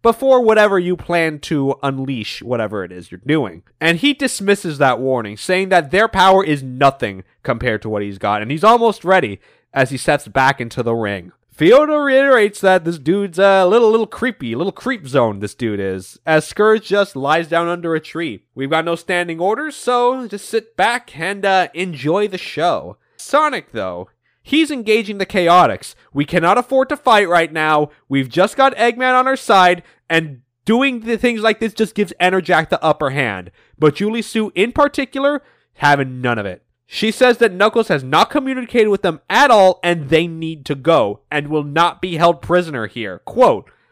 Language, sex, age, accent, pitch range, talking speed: English, male, 20-39, American, 140-220 Hz, 195 wpm